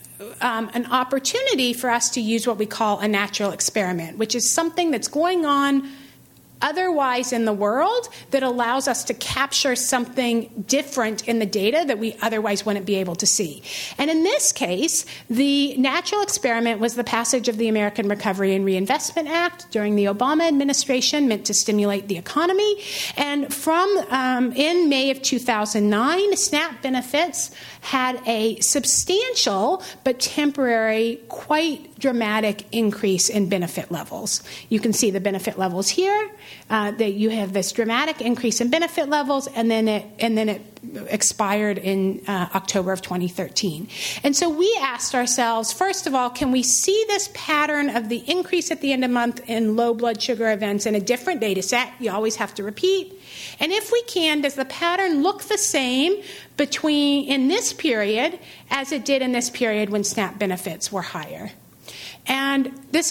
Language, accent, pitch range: English, American, 215-295 Hz